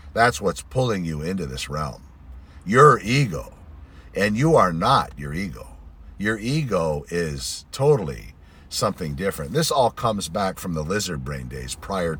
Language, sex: English, male